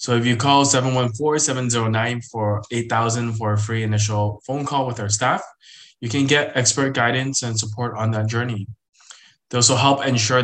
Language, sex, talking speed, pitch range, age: English, male, 165 wpm, 110-130 Hz, 20-39